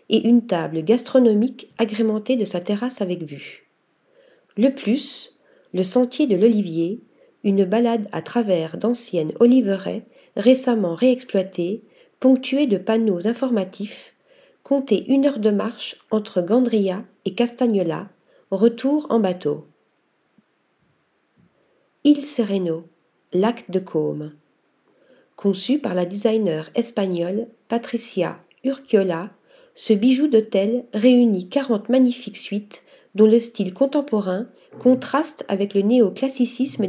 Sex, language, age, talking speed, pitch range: female, French, 40-59, 110 wpm, 190-250 Hz